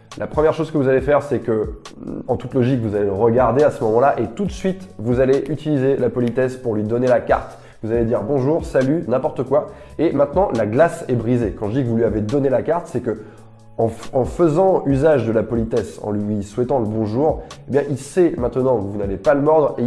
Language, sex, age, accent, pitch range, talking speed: French, male, 20-39, French, 110-140 Hz, 250 wpm